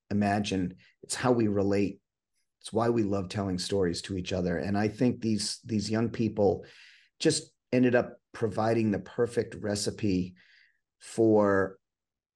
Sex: male